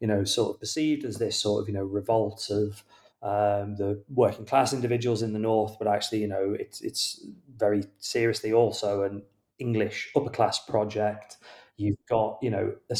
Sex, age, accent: male, 30-49, British